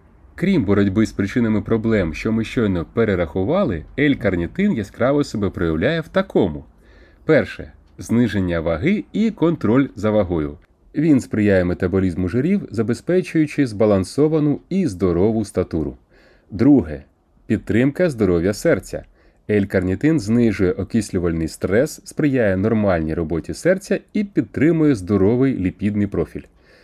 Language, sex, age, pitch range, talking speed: Ukrainian, male, 30-49, 95-140 Hz, 110 wpm